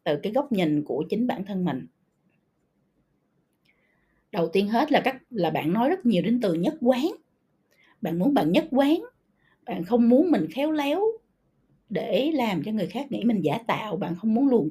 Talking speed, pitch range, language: 190 wpm, 170-265 Hz, Vietnamese